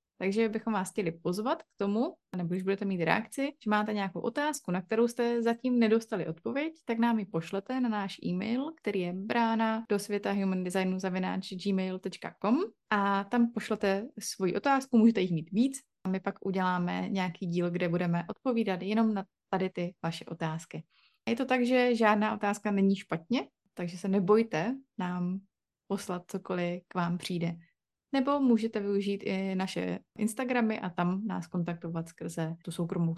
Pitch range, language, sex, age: 185-225 Hz, Czech, female, 20-39